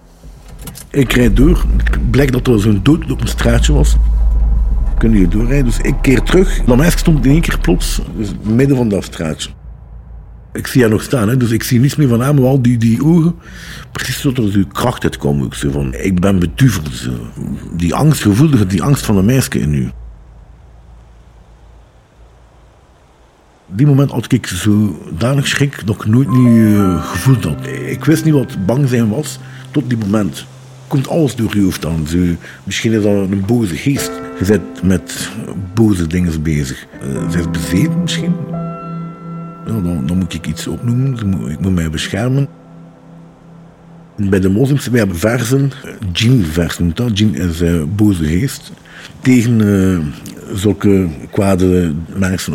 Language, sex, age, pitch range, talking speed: Dutch, male, 50-69, 85-130 Hz, 170 wpm